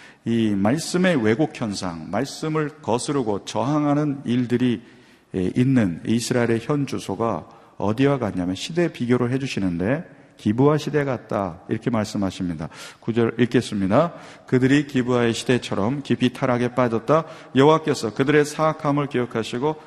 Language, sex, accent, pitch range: Korean, male, native, 105-145 Hz